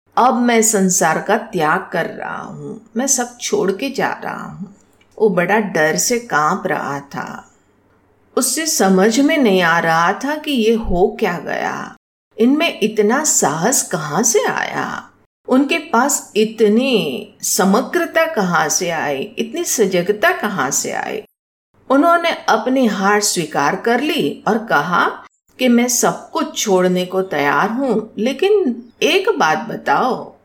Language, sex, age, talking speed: Hindi, female, 50-69, 140 wpm